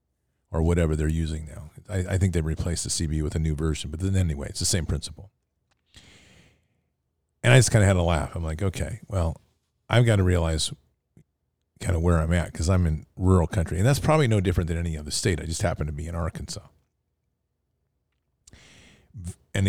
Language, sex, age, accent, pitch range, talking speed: English, male, 40-59, American, 80-100 Hz, 205 wpm